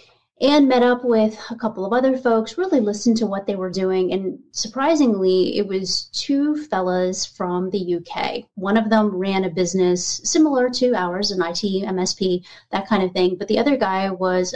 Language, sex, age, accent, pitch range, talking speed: English, female, 30-49, American, 185-235 Hz, 190 wpm